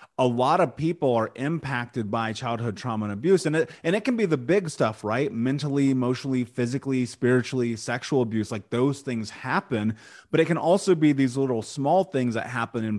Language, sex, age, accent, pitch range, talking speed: English, male, 30-49, American, 115-145 Hz, 200 wpm